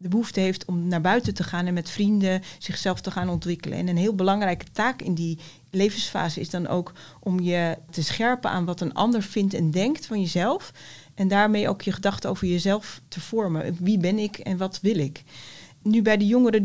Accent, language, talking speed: Dutch, Dutch, 215 wpm